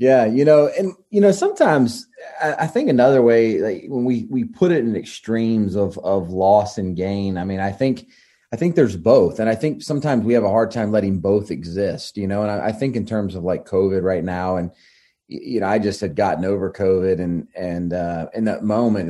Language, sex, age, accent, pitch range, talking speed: English, male, 30-49, American, 95-120 Hz, 230 wpm